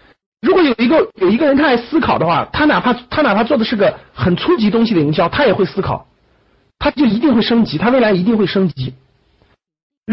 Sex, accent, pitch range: male, native, 170-265 Hz